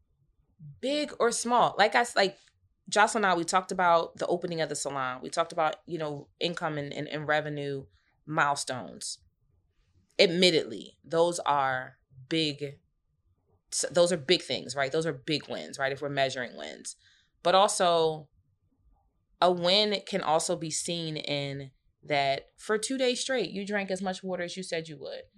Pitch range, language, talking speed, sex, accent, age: 145-190 Hz, English, 165 wpm, female, American, 20-39